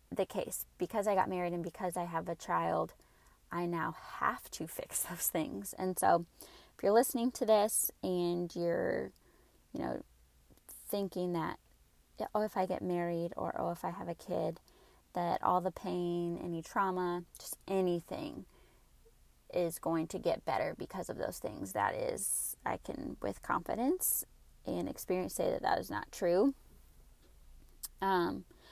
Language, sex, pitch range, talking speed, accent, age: English, female, 175-235 Hz, 160 wpm, American, 20-39